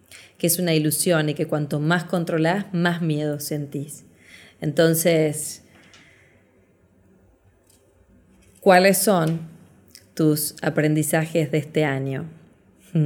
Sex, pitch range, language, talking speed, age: female, 155-170 Hz, Spanish, 90 wpm, 20-39